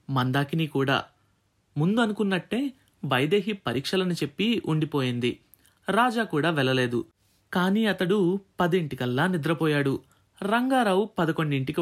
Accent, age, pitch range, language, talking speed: native, 30-49, 130-200 Hz, Telugu, 80 wpm